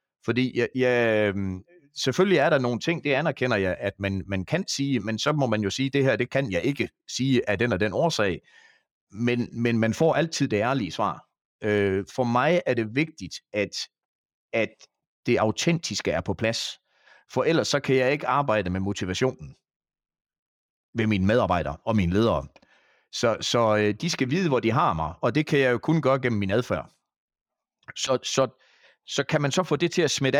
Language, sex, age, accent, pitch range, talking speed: Danish, male, 30-49, native, 105-140 Hz, 200 wpm